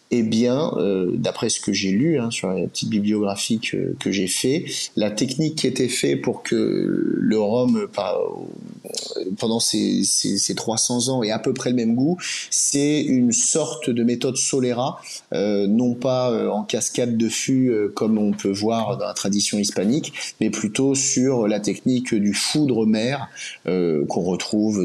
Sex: male